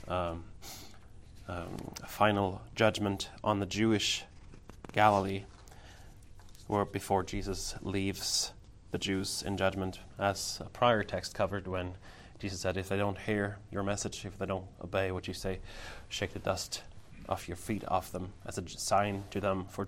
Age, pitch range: 20-39, 95-110 Hz